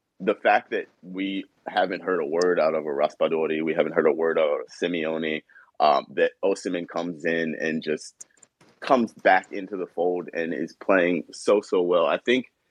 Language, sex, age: English, male, 30-49